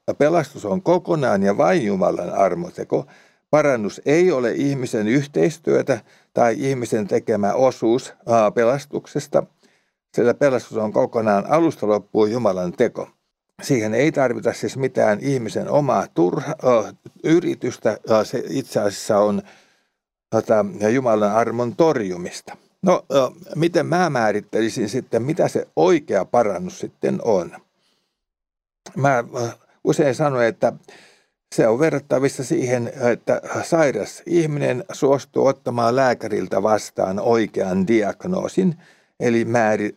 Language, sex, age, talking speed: Finnish, male, 60-79, 105 wpm